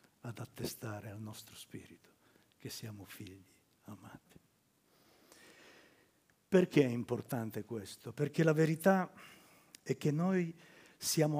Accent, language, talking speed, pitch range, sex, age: native, Italian, 105 wpm, 120-155 Hz, male, 50-69